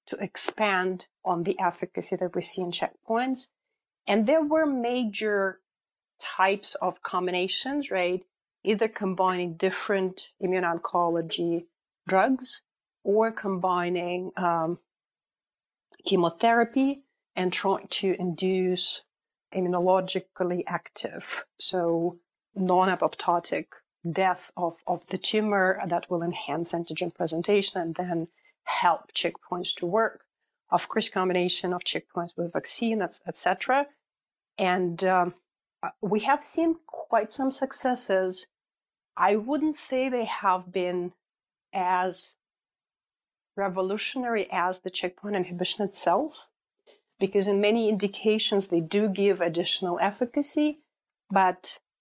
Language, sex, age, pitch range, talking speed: English, female, 40-59, 180-215 Hz, 105 wpm